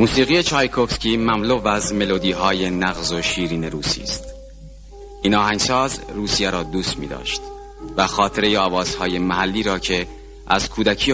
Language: Persian